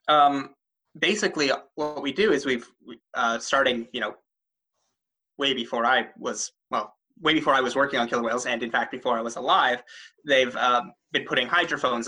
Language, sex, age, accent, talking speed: English, male, 20-39, American, 180 wpm